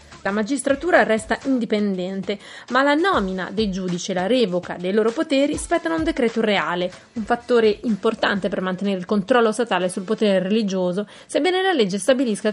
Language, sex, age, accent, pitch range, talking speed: Italian, female, 30-49, native, 195-270 Hz, 165 wpm